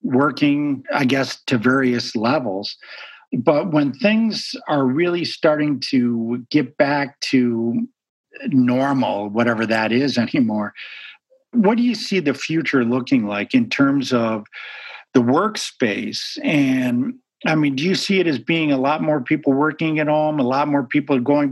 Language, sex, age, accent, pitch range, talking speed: English, male, 50-69, American, 130-190 Hz, 155 wpm